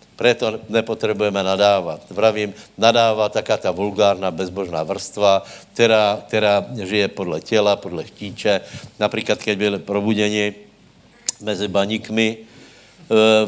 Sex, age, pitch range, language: male, 70-89, 105-120 Hz, Slovak